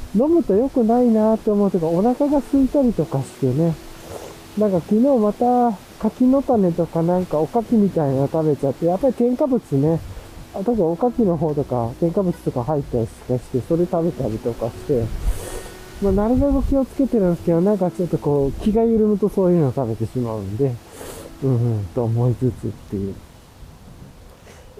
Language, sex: Japanese, male